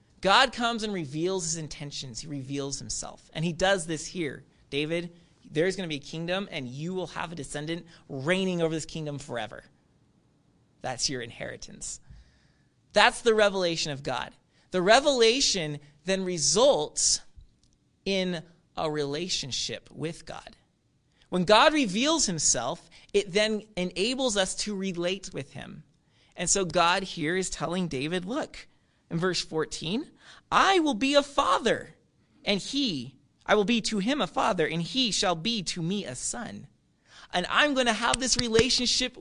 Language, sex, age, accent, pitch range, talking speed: English, male, 30-49, American, 155-225 Hz, 155 wpm